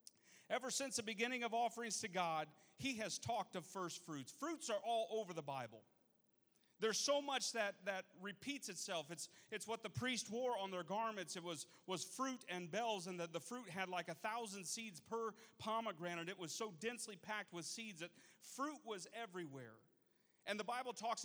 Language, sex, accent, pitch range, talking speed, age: English, male, American, 175-225 Hz, 190 wpm, 40-59